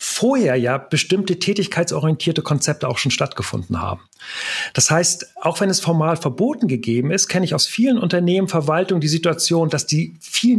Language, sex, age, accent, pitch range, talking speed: German, male, 40-59, German, 130-180 Hz, 165 wpm